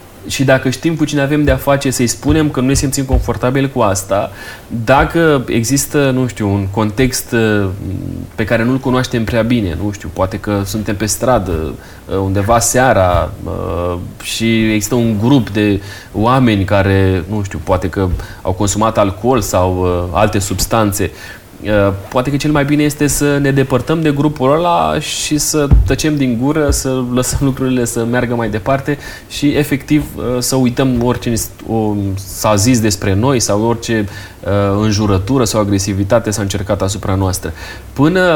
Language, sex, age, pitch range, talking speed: Romanian, male, 30-49, 100-130 Hz, 155 wpm